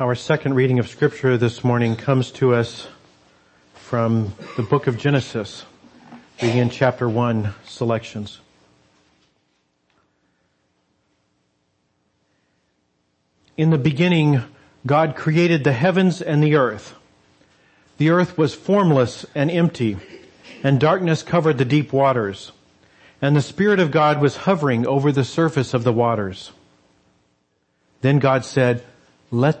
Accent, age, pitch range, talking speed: American, 40-59, 95-150 Hz, 120 wpm